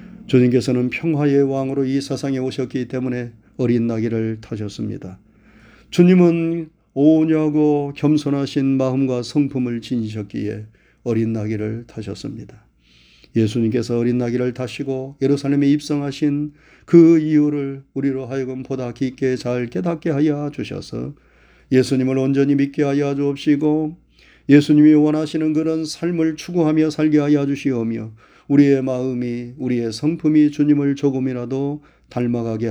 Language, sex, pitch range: Korean, male, 120-145 Hz